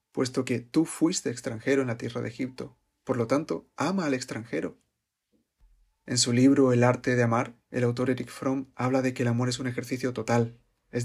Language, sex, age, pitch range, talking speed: Spanish, male, 30-49, 120-130 Hz, 200 wpm